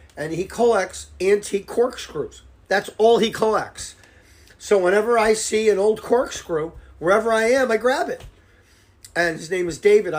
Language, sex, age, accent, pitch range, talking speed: English, male, 40-59, American, 155-205 Hz, 160 wpm